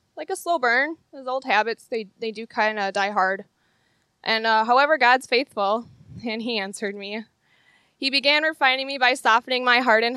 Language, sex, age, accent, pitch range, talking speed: English, female, 20-39, American, 205-240 Hz, 190 wpm